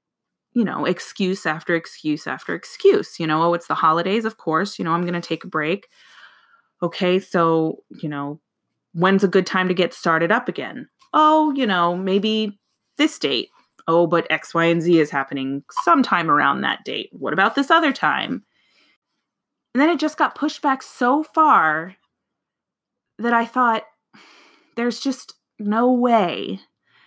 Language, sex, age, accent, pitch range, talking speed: English, female, 20-39, American, 175-260 Hz, 165 wpm